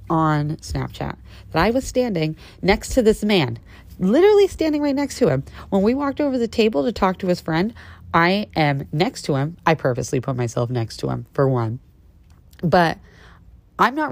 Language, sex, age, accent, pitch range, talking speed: English, female, 30-49, American, 120-175 Hz, 185 wpm